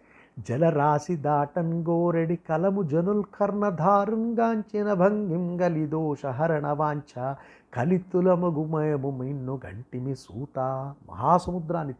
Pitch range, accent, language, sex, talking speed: 130-170 Hz, native, Telugu, male, 50 wpm